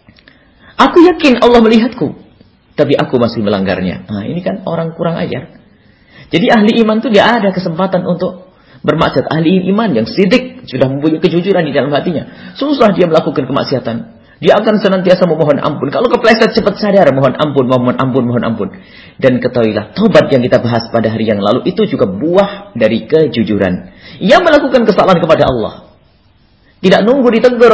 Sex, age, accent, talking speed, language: male, 40-59, Indonesian, 160 wpm, English